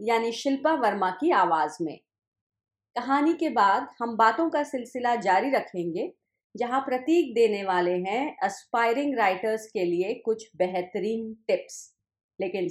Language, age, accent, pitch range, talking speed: Hindi, 40-59, native, 205-280 Hz, 130 wpm